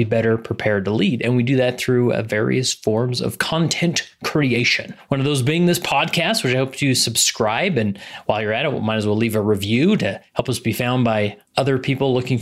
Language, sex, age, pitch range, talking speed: English, male, 30-49, 115-145 Hz, 225 wpm